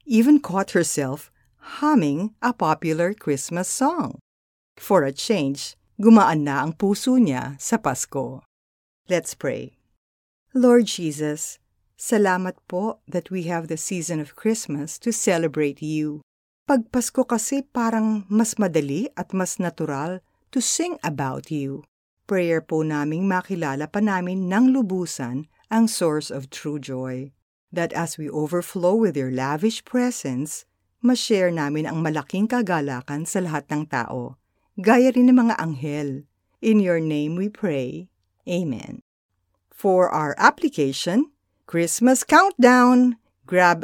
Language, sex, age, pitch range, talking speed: Filipino, female, 50-69, 150-225 Hz, 130 wpm